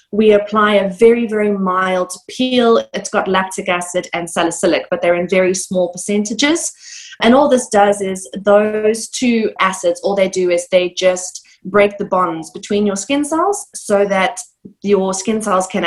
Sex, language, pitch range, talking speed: female, English, 185-220 Hz, 175 wpm